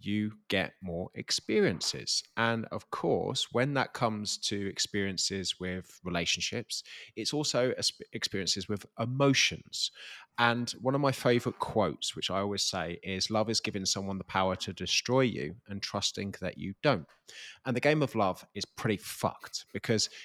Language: English